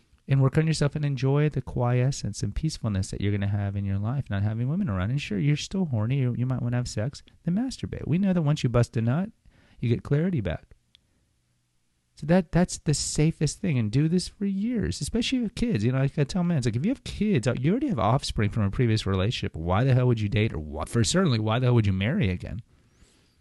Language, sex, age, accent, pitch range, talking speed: English, male, 30-49, American, 105-140 Hz, 245 wpm